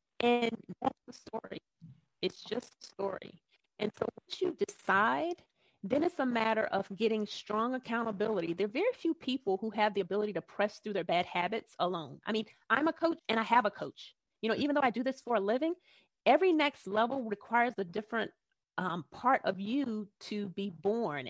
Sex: female